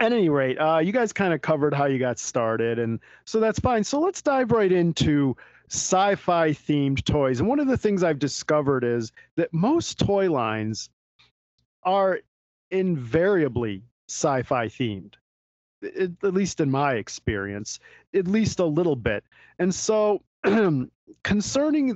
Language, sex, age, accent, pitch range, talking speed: English, male, 40-59, American, 120-170 Hz, 150 wpm